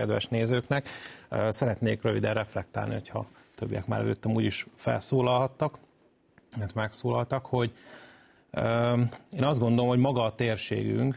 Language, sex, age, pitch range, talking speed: Hungarian, male, 30-49, 100-115 Hz, 115 wpm